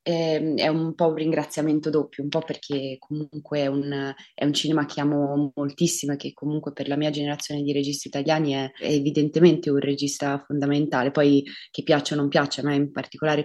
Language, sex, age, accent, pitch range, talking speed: Italian, female, 20-39, native, 140-155 Hz, 200 wpm